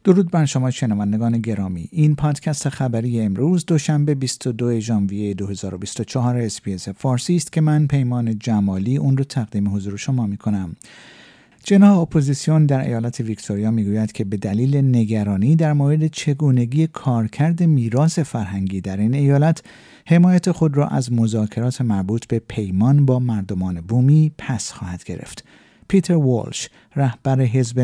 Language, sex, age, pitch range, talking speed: Persian, male, 50-69, 110-155 Hz, 140 wpm